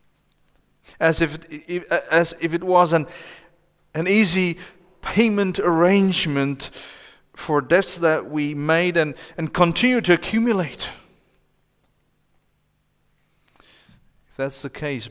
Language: English